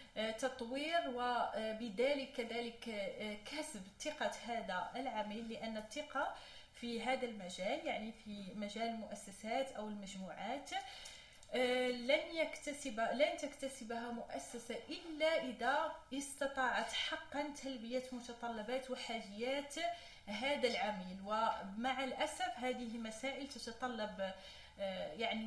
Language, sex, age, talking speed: Arabic, female, 30-49, 90 wpm